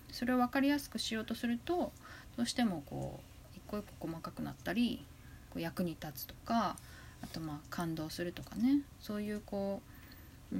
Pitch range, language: 175-250 Hz, Japanese